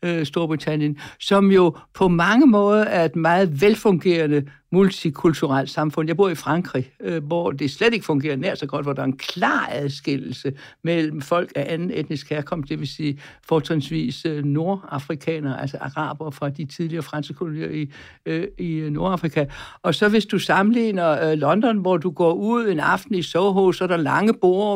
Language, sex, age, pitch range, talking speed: Danish, male, 60-79, 155-200 Hz, 170 wpm